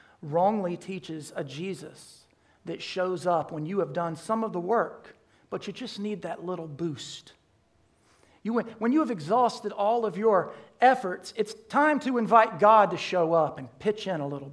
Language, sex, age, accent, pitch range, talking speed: English, male, 40-59, American, 165-215 Hz, 180 wpm